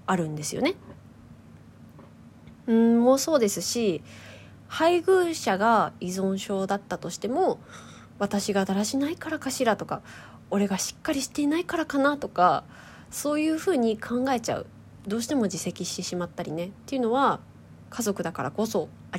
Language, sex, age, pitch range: Japanese, female, 20-39, 180-270 Hz